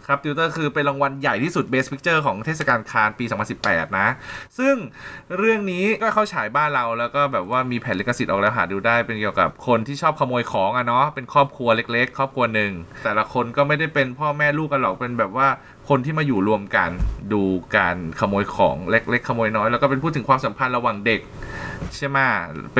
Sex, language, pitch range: male, Thai, 115-150 Hz